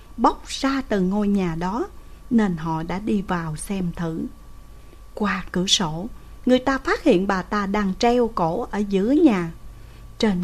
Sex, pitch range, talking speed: female, 175-245 Hz, 165 wpm